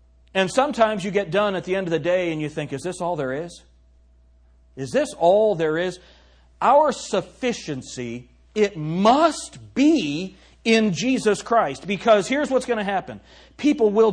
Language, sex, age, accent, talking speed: English, male, 40-59, American, 170 wpm